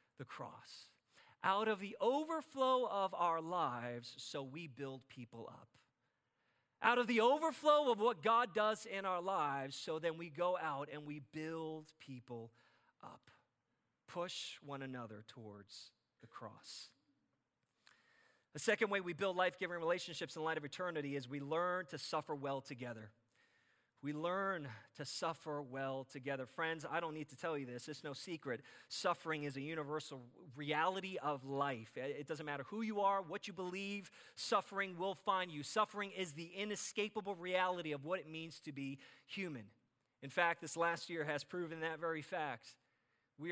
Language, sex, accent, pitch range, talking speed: English, male, American, 140-190 Hz, 165 wpm